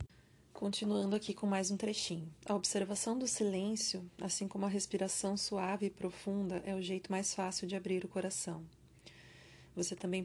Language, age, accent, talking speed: Portuguese, 30-49, Brazilian, 165 wpm